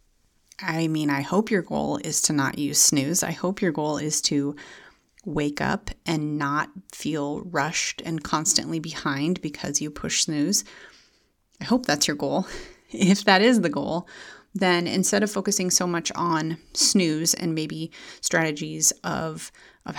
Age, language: 30-49, English